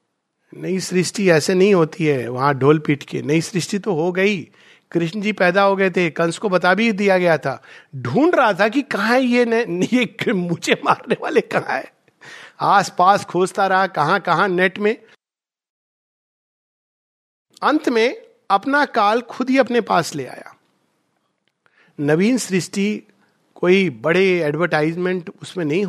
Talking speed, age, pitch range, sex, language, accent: 155 wpm, 50-69, 170-230 Hz, male, Hindi, native